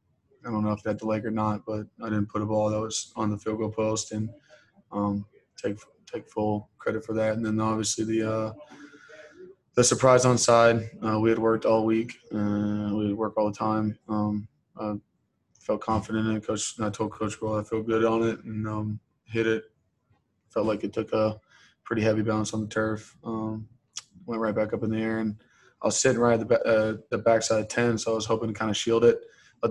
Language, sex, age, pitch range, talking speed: English, male, 20-39, 105-110 Hz, 225 wpm